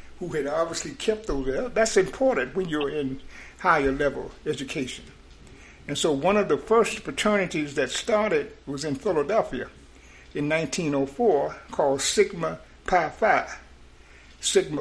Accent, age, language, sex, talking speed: American, 60-79, English, male, 120 wpm